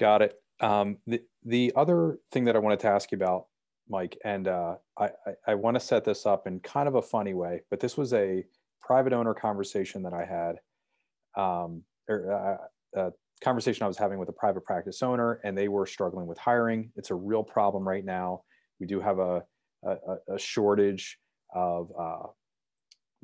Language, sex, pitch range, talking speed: English, male, 90-110 Hz, 190 wpm